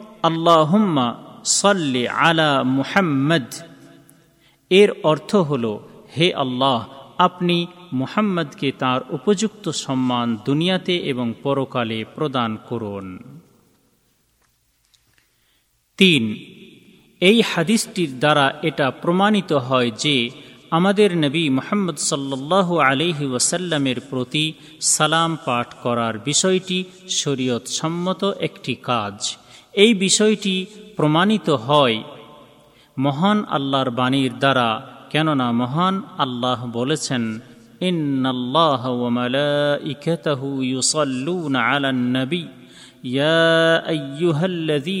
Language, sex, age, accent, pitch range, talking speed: Bengali, male, 40-59, native, 130-175 Hz, 75 wpm